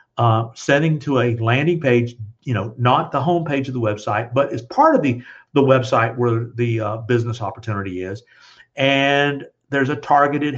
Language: English